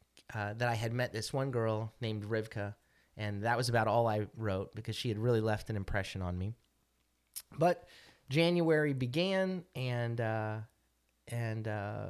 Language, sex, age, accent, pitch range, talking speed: English, male, 30-49, American, 105-130 Hz, 160 wpm